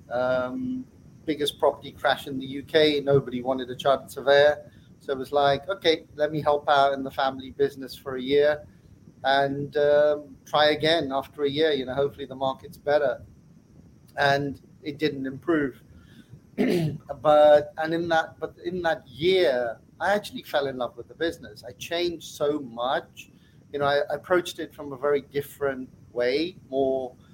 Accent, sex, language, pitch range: British, male, English, 130-150 Hz